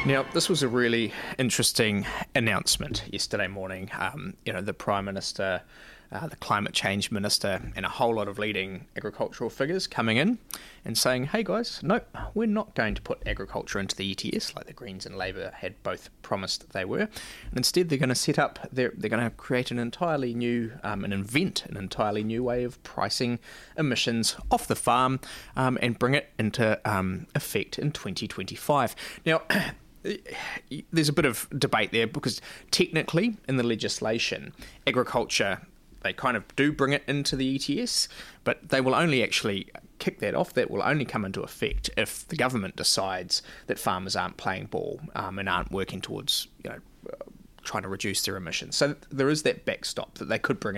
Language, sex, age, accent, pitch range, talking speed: English, male, 20-39, Australian, 105-145 Hz, 185 wpm